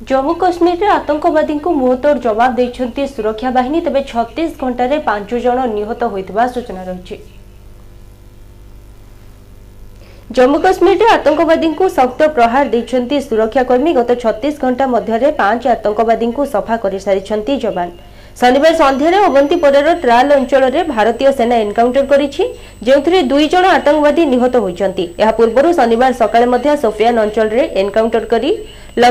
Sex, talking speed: female, 80 wpm